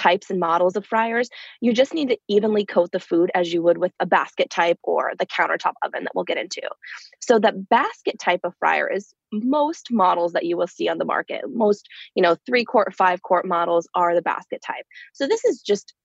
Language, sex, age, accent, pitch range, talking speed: English, female, 20-39, American, 180-230 Hz, 225 wpm